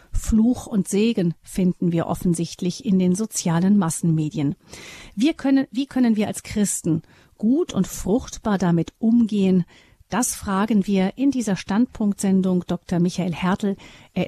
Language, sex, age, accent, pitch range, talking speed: German, female, 40-59, German, 185-230 Hz, 135 wpm